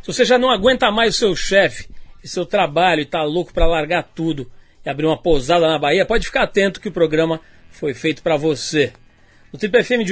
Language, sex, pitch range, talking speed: Portuguese, male, 155-200 Hz, 225 wpm